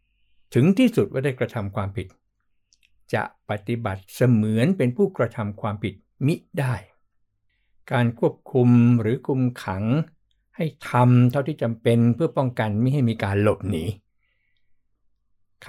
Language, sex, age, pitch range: Thai, male, 60-79, 100-125 Hz